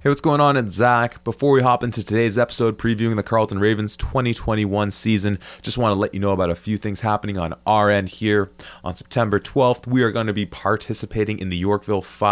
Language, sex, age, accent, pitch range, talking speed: English, male, 20-39, American, 90-105 Hz, 220 wpm